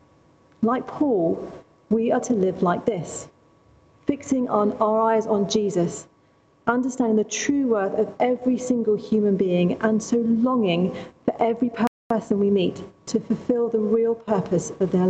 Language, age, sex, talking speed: English, 40-59, female, 150 wpm